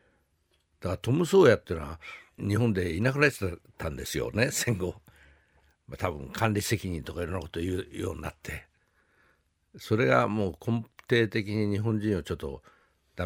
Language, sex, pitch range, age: Japanese, male, 85-125 Hz, 60-79